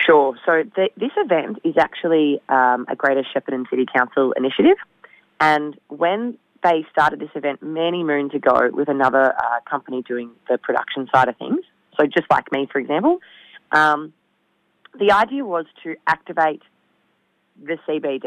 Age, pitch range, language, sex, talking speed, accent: 30-49, 135-170 Hz, English, female, 150 wpm, Australian